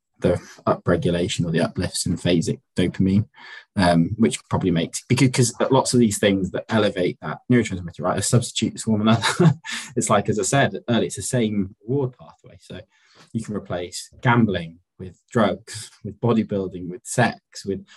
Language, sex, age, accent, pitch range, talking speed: English, male, 20-39, British, 95-120 Hz, 165 wpm